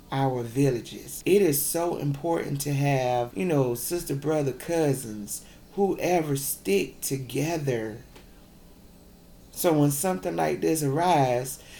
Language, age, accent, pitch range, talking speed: English, 30-49, American, 140-180 Hz, 110 wpm